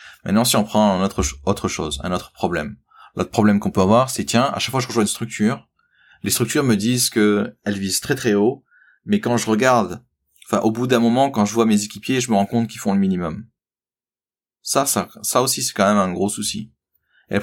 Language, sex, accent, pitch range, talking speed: French, male, French, 100-125 Hz, 240 wpm